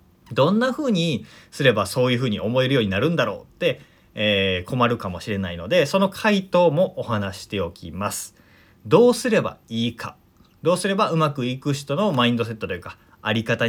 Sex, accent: male, native